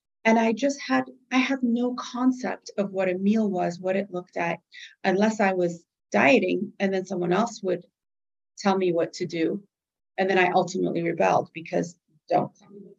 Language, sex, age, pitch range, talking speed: English, female, 30-49, 175-230 Hz, 190 wpm